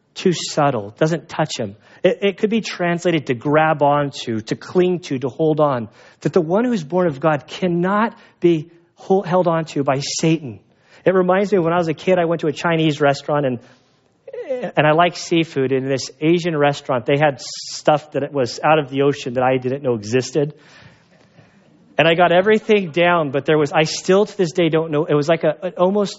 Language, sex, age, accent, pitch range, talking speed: English, male, 30-49, American, 140-175 Hz, 215 wpm